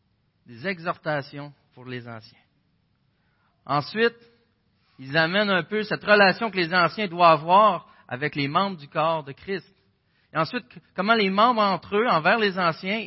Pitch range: 120-180 Hz